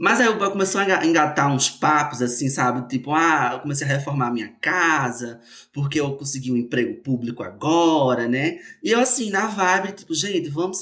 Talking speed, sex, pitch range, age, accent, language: 200 wpm, male, 120-180 Hz, 20-39, Brazilian, Portuguese